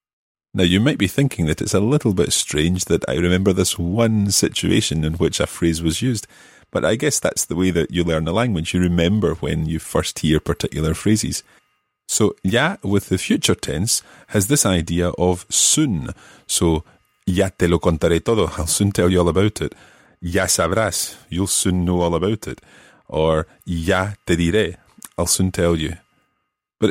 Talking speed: 185 wpm